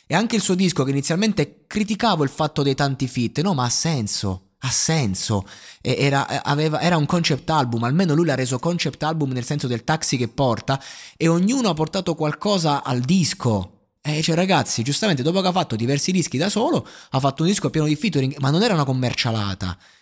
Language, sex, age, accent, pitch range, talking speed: Italian, male, 20-39, native, 105-155 Hz, 200 wpm